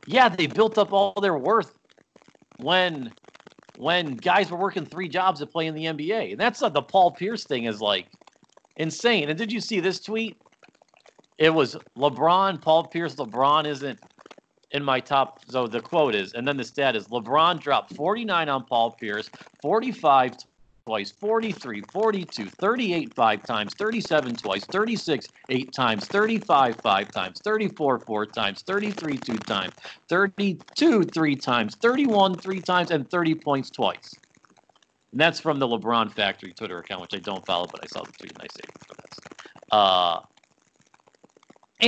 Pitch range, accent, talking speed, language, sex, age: 135-195 Hz, American, 160 wpm, English, male, 40-59